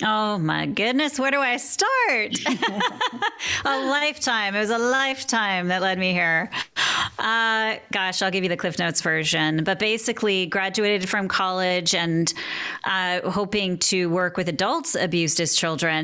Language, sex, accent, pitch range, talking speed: English, female, American, 165-200 Hz, 155 wpm